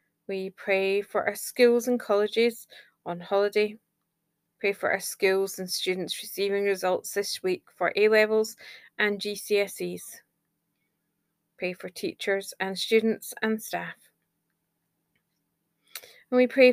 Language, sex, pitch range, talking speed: English, female, 185-215 Hz, 120 wpm